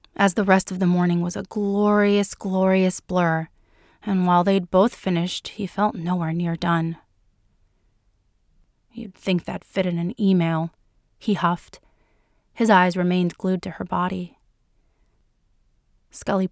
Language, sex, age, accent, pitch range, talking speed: English, female, 30-49, American, 175-200 Hz, 140 wpm